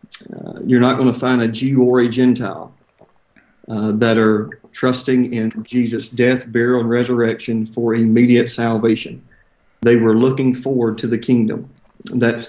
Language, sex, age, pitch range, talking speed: English, male, 40-59, 115-125 Hz, 155 wpm